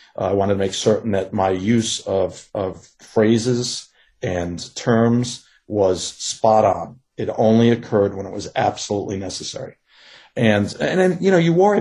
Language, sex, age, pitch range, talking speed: English, male, 40-59, 105-135 Hz, 165 wpm